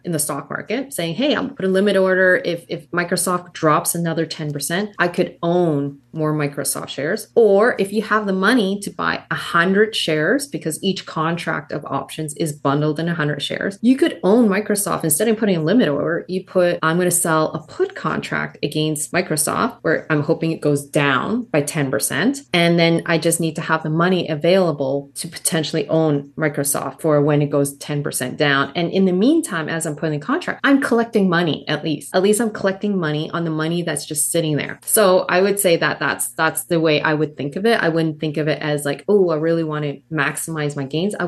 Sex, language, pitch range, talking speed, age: female, English, 150-185 Hz, 220 wpm, 30-49